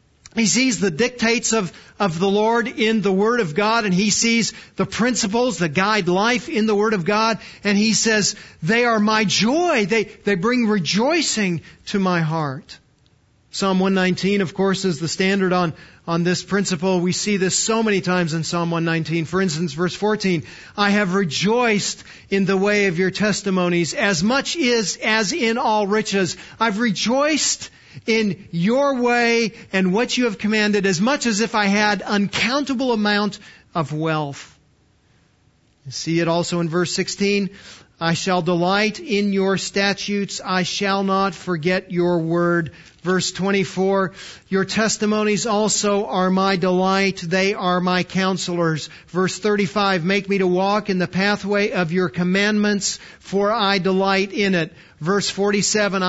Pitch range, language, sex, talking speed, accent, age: 185-215 Hz, English, male, 160 wpm, American, 40-59